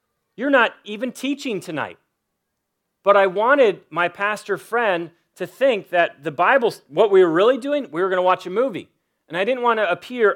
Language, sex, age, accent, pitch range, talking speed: English, male, 40-59, American, 160-210 Hz, 195 wpm